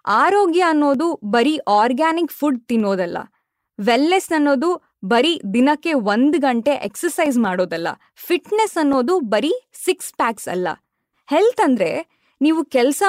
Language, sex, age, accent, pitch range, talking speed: Kannada, female, 20-39, native, 230-325 Hz, 110 wpm